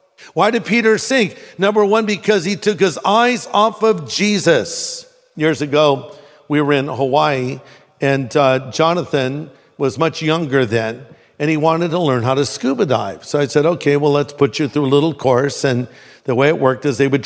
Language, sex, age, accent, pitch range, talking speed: English, male, 50-69, American, 140-175 Hz, 195 wpm